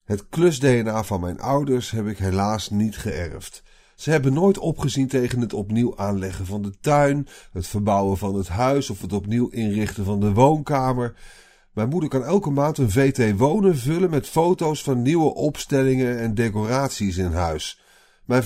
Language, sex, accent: Dutch, male, Dutch